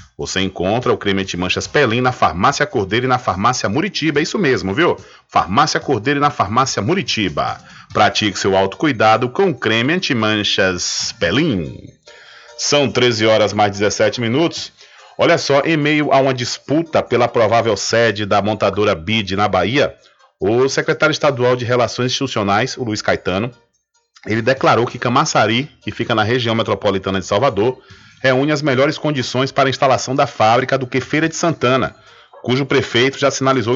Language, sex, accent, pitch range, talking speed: Portuguese, male, Brazilian, 105-135 Hz, 160 wpm